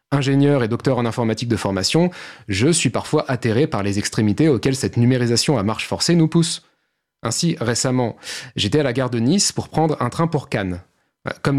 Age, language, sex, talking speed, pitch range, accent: 30-49, French, male, 190 wpm, 110-150 Hz, French